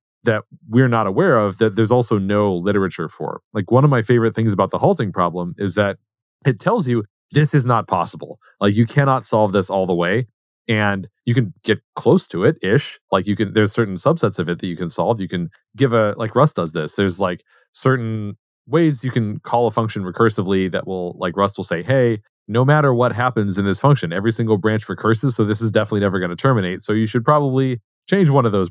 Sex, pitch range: male, 95-120 Hz